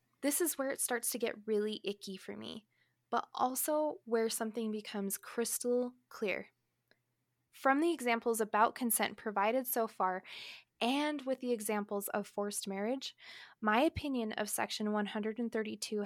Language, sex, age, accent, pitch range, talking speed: English, female, 20-39, American, 210-245 Hz, 140 wpm